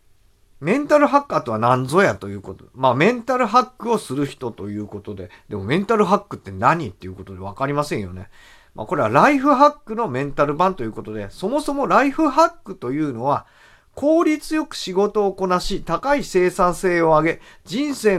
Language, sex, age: Japanese, male, 40-59